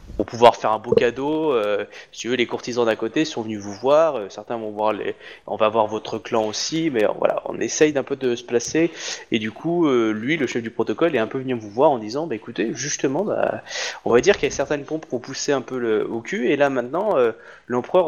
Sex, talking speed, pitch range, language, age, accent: male, 265 wpm, 115-180 Hz, French, 20-39, French